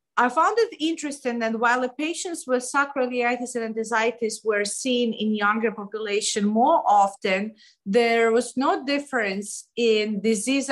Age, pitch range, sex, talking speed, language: 30-49, 210-250 Hz, female, 140 wpm, English